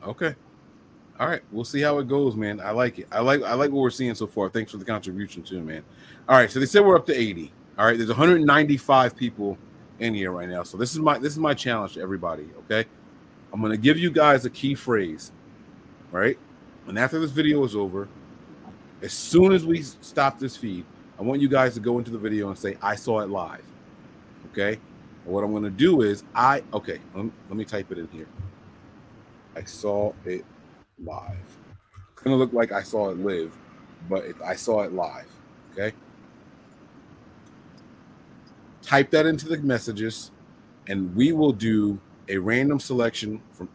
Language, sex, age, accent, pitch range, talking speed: English, male, 30-49, American, 100-135 Hz, 190 wpm